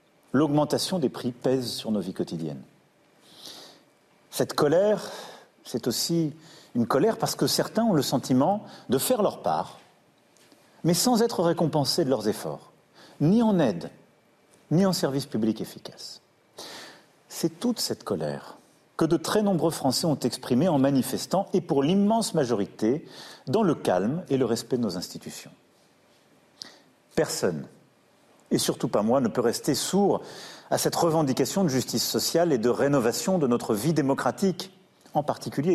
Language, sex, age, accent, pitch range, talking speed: French, male, 40-59, French, 135-190 Hz, 150 wpm